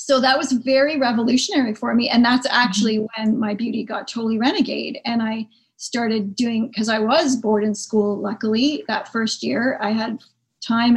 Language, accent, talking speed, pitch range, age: English, American, 180 wpm, 215-245 Hz, 40-59